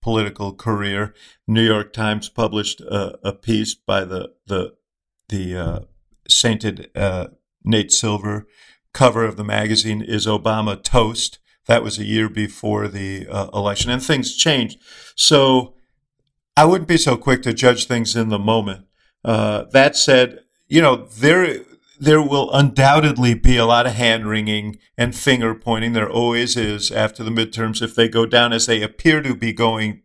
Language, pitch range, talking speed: English, 105-120 Hz, 160 wpm